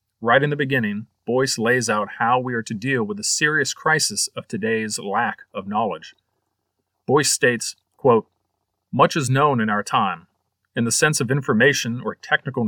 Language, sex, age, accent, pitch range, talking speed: English, male, 40-59, American, 110-140 Hz, 175 wpm